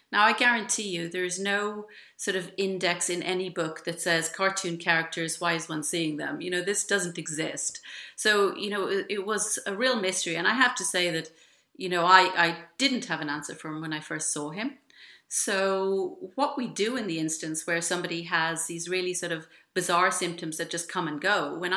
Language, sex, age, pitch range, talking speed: English, female, 40-59, 170-205 Hz, 220 wpm